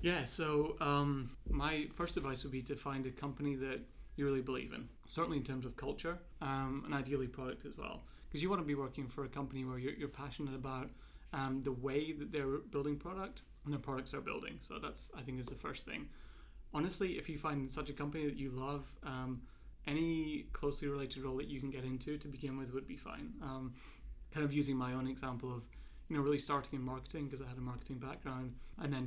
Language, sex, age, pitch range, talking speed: English, male, 30-49, 130-145 Hz, 225 wpm